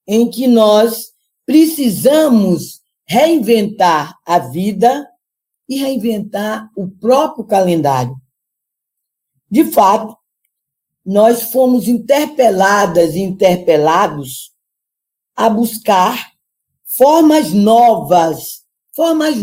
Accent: Brazilian